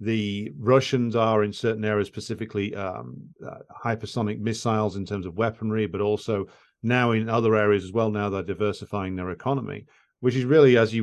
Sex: male